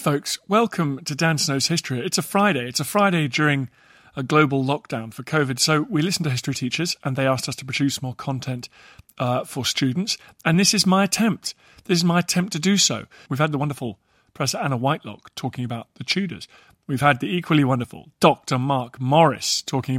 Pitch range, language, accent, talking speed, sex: 125-165 Hz, English, British, 200 wpm, male